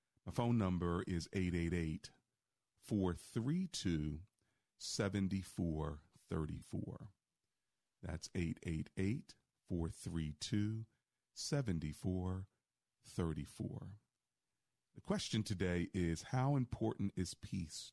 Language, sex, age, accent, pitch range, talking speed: English, male, 40-59, American, 85-110 Hz, 50 wpm